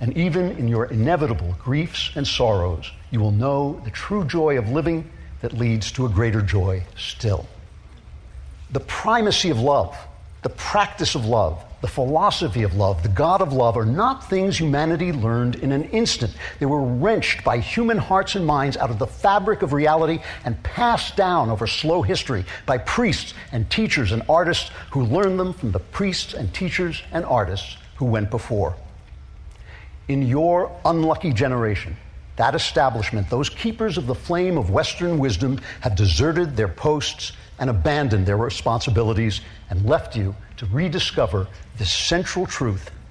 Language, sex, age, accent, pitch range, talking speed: English, male, 60-79, American, 100-160 Hz, 160 wpm